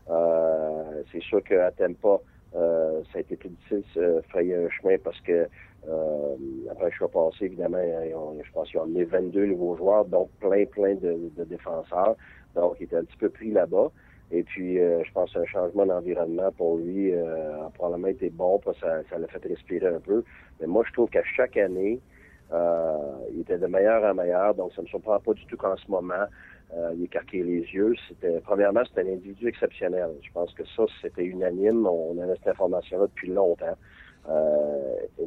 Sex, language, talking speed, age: male, French, 205 wpm, 40-59